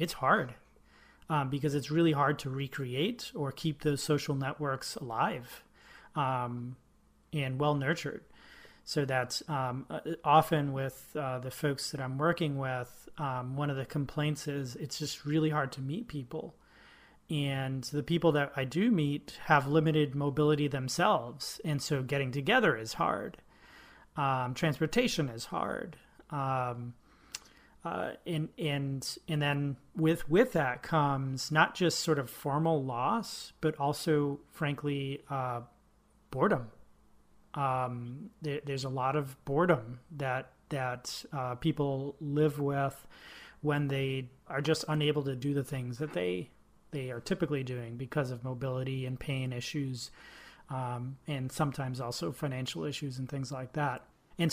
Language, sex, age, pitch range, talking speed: English, male, 30-49, 130-155 Hz, 140 wpm